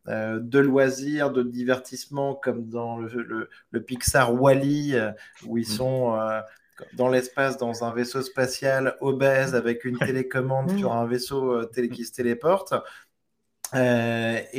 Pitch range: 120-140 Hz